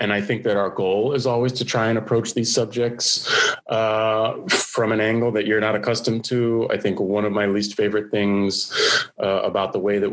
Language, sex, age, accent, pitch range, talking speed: English, male, 30-49, American, 95-115 Hz, 215 wpm